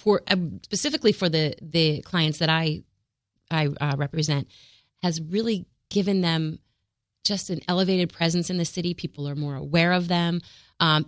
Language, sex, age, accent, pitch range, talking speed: English, female, 30-49, American, 155-185 Hz, 160 wpm